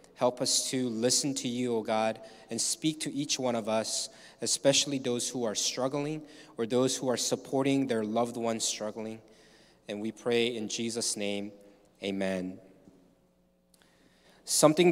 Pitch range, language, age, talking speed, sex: 110-145 Hz, English, 20-39, 150 wpm, male